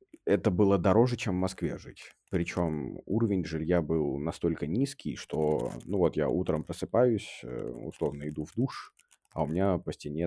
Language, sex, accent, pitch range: Russian, male, native, 80-95 Hz